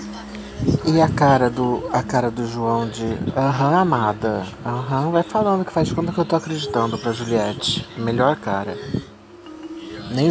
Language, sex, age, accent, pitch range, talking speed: Portuguese, male, 30-49, Brazilian, 115-155 Hz, 150 wpm